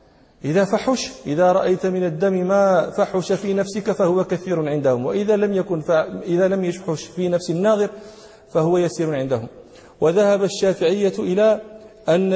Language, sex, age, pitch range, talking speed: English, male, 40-59, 170-200 Hz, 140 wpm